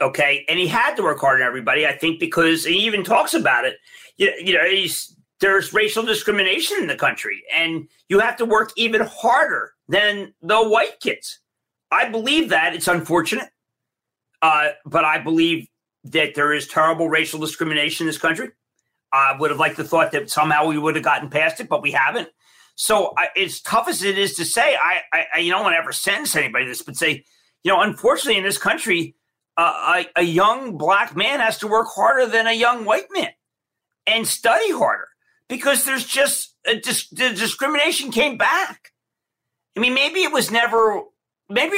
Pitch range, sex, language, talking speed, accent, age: 160-230 Hz, male, English, 190 wpm, American, 40-59